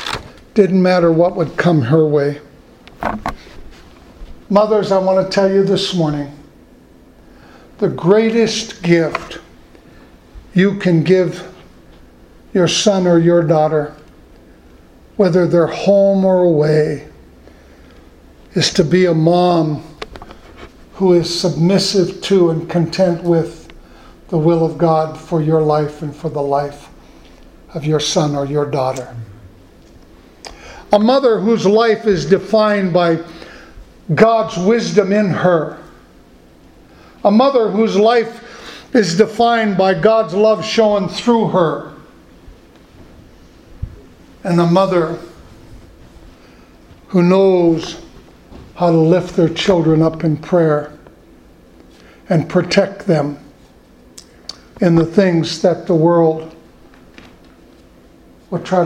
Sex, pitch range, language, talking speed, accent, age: male, 145-190 Hz, English, 110 wpm, American, 60-79